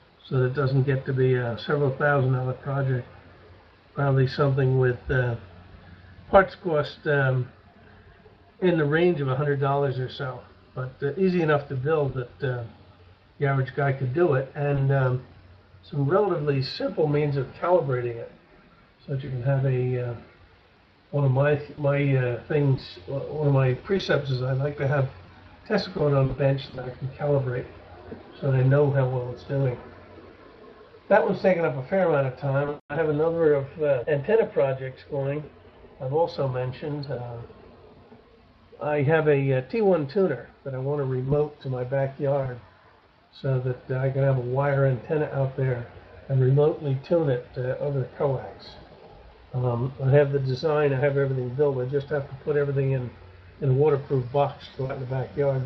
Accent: American